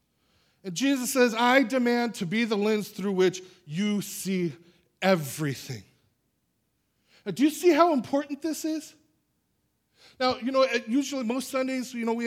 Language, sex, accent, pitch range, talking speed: English, male, American, 180-230 Hz, 145 wpm